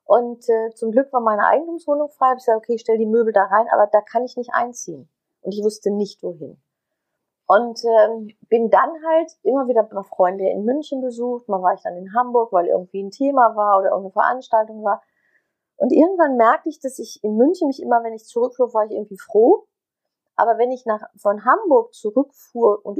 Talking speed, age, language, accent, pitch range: 205 wpm, 40-59, German, German, 205-280 Hz